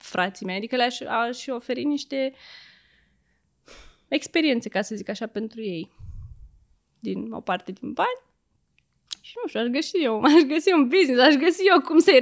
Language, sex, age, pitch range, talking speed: Romanian, female, 20-39, 205-280 Hz, 165 wpm